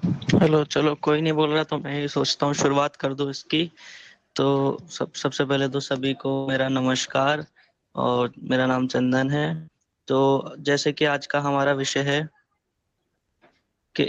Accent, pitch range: native, 145-170 Hz